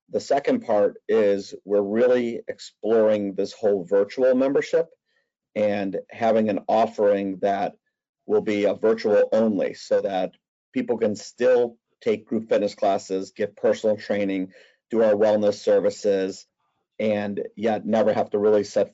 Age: 40-59